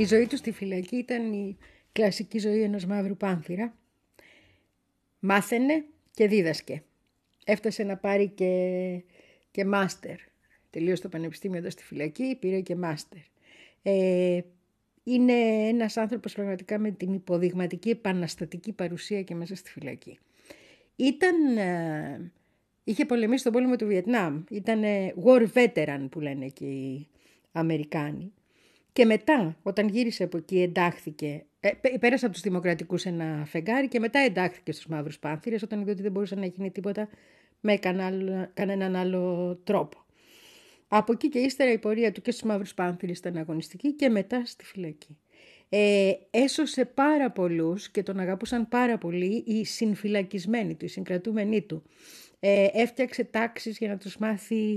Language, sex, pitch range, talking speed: Greek, female, 180-225 Hz, 140 wpm